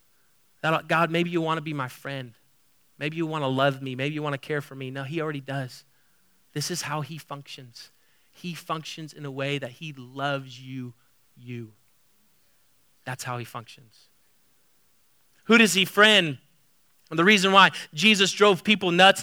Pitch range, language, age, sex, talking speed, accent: 150-205 Hz, English, 30-49, male, 160 wpm, American